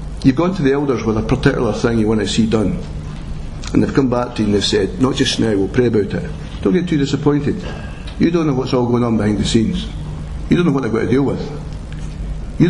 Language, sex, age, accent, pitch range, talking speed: English, male, 60-79, British, 110-170 Hz, 255 wpm